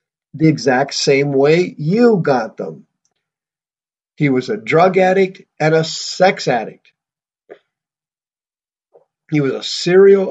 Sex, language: male, English